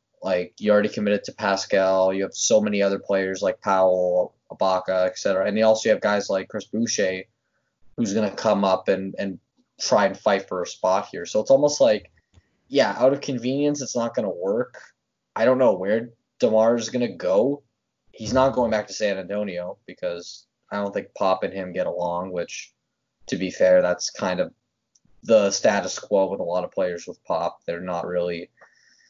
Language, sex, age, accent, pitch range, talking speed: English, male, 20-39, American, 95-115 Hz, 200 wpm